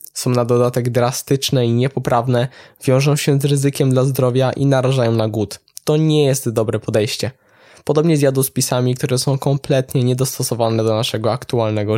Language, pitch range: Polish, 115-140 Hz